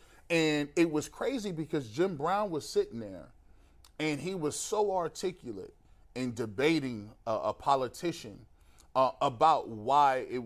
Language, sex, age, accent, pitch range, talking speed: English, male, 30-49, American, 115-150 Hz, 140 wpm